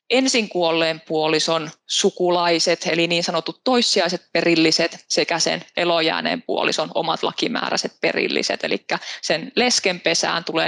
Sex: female